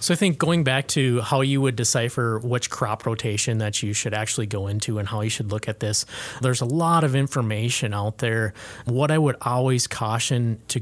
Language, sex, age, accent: English, male, 20-39, American